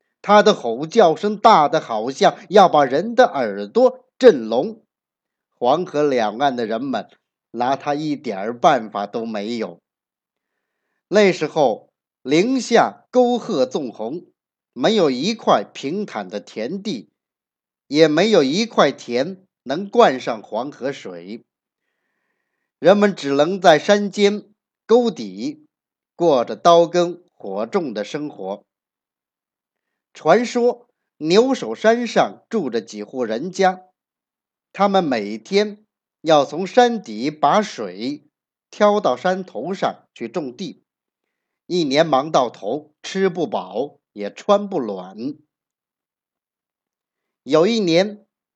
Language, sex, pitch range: Chinese, male, 155-225 Hz